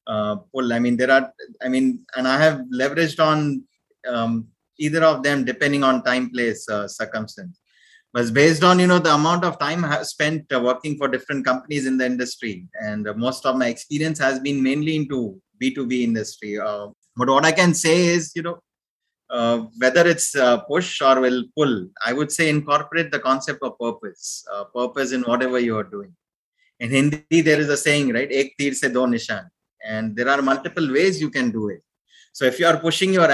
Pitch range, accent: 125-155 Hz, Indian